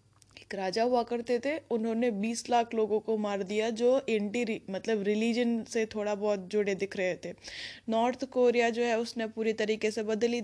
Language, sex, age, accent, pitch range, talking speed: Hindi, female, 10-29, native, 205-250 Hz, 180 wpm